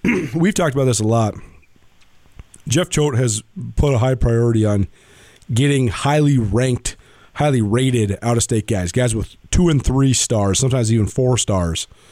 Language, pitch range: English, 105-135 Hz